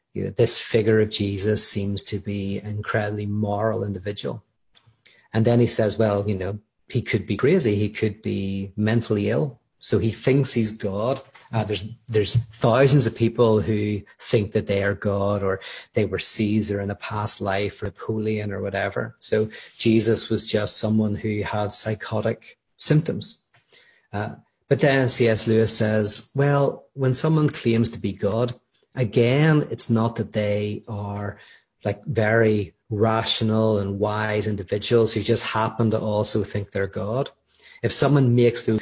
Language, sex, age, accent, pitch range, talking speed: English, male, 40-59, Irish, 105-120 Hz, 160 wpm